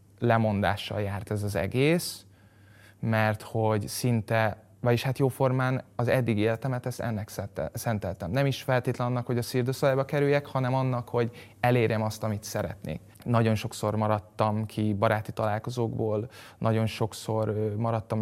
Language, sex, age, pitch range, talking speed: Hungarian, male, 20-39, 105-115 Hz, 135 wpm